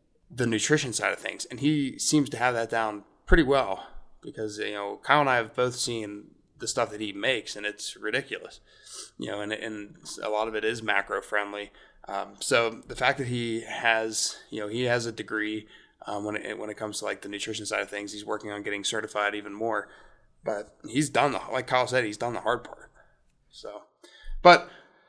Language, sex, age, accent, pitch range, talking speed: English, male, 20-39, American, 105-120 Hz, 215 wpm